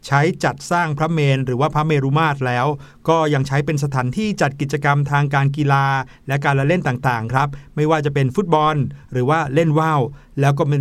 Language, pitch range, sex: Thai, 140-175 Hz, male